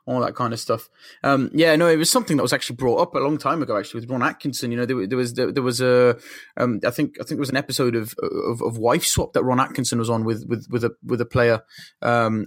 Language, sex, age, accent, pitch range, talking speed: English, male, 20-39, British, 120-150 Hz, 290 wpm